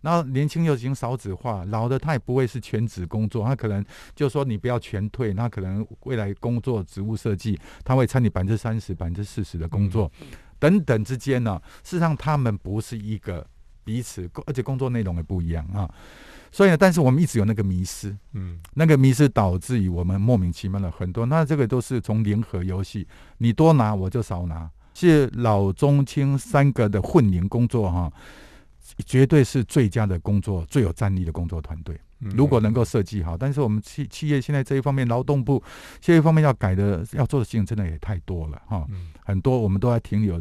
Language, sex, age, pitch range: Chinese, male, 50-69, 95-130 Hz